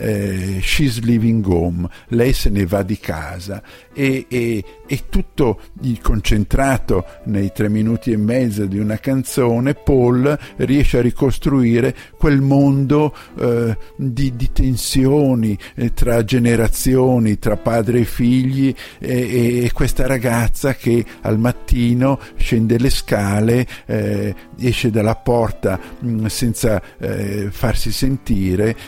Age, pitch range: 50-69, 105-125 Hz